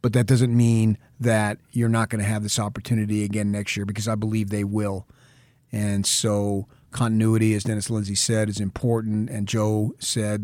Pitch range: 105-130 Hz